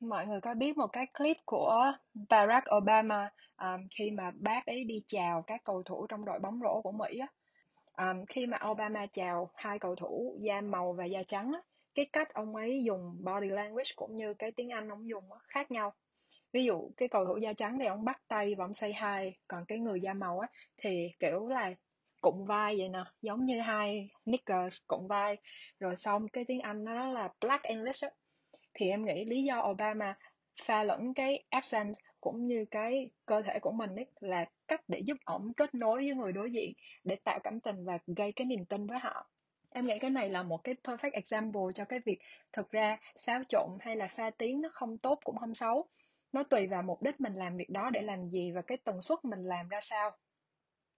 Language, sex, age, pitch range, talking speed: Vietnamese, female, 20-39, 200-250 Hz, 220 wpm